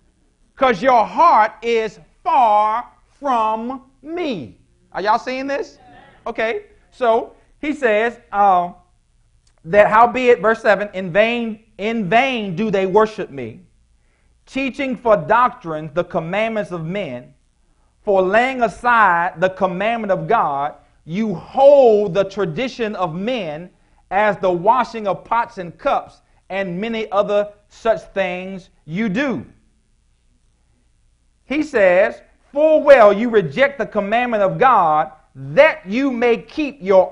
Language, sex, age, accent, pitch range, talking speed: English, male, 50-69, American, 185-245 Hz, 125 wpm